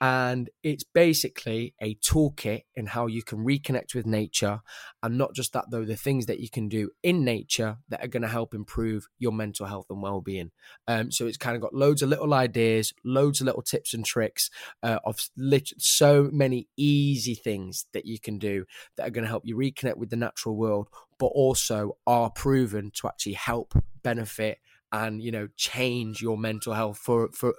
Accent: British